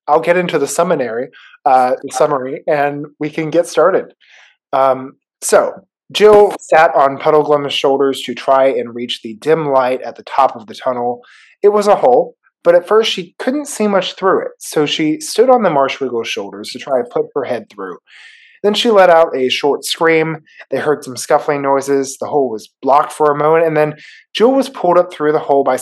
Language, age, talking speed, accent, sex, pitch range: English, 20-39, 205 wpm, American, male, 140-170 Hz